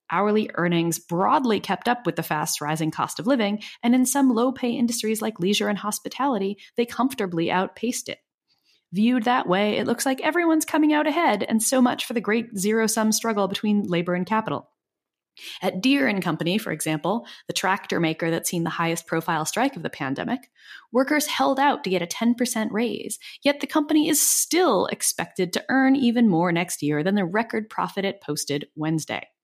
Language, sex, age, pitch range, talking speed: English, female, 20-39, 170-255 Hz, 180 wpm